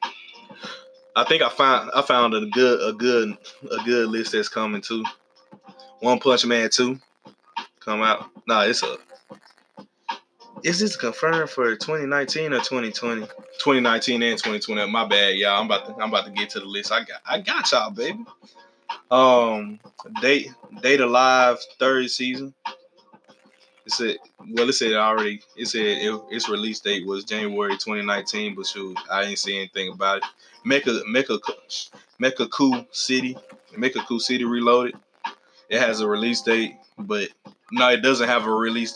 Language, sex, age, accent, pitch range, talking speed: English, male, 20-39, American, 110-135 Hz, 165 wpm